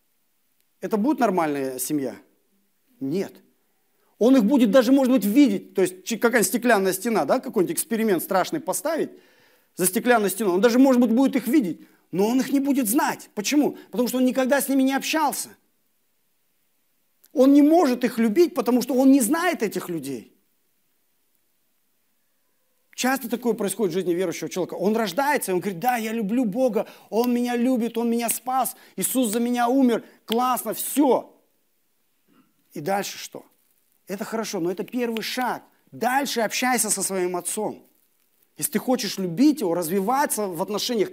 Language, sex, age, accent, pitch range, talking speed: Russian, male, 40-59, native, 200-270 Hz, 155 wpm